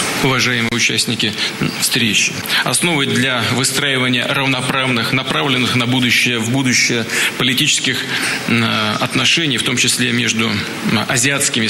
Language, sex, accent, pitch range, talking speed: Russian, male, native, 120-145 Hz, 95 wpm